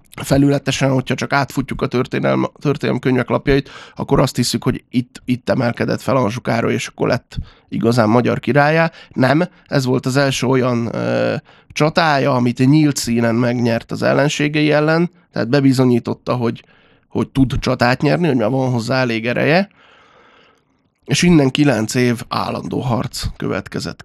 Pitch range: 120-140 Hz